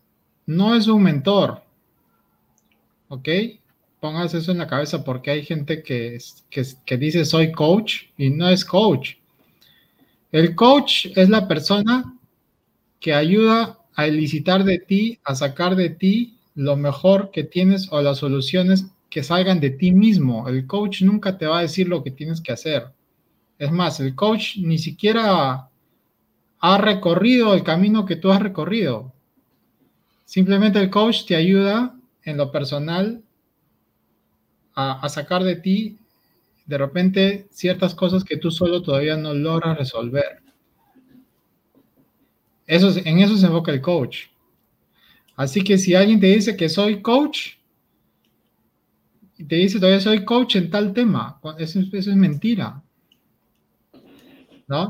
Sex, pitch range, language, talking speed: male, 155-200 Hz, Spanish, 145 wpm